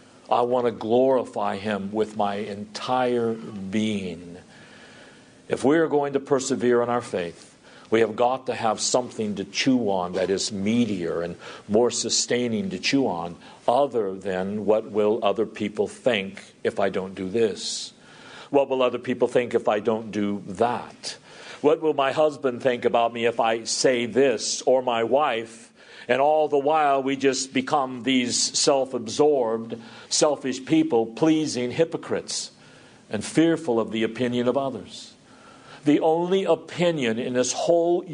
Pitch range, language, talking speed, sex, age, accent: 120-180 Hz, English, 155 wpm, male, 50-69, American